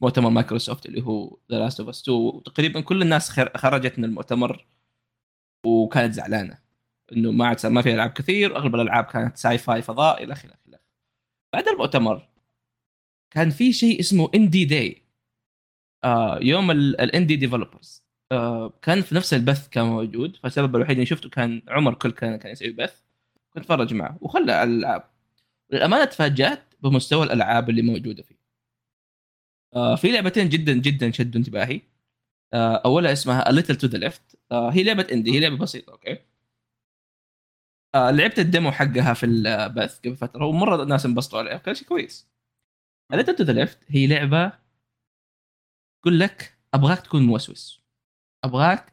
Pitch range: 120-155 Hz